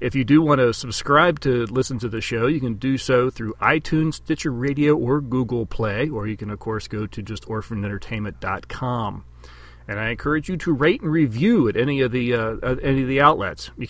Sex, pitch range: male, 110-135 Hz